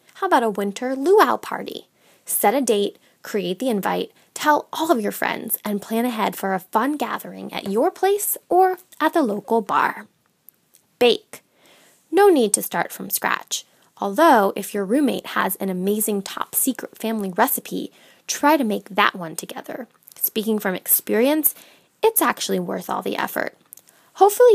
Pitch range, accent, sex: 200-300 Hz, American, female